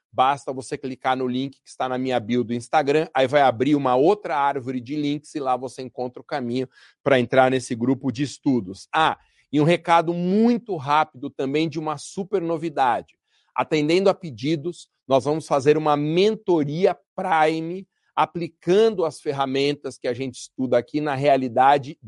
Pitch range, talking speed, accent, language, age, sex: 130-155 Hz, 170 wpm, Brazilian, Portuguese, 40-59, male